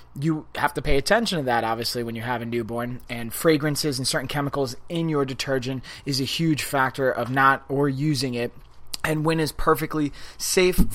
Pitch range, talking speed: 120-145 Hz, 190 wpm